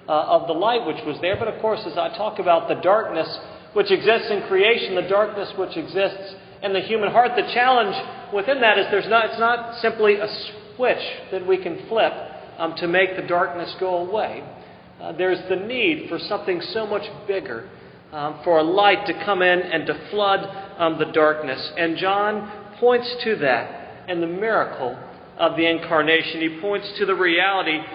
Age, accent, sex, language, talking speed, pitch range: 40-59, American, male, English, 190 wpm, 170-215 Hz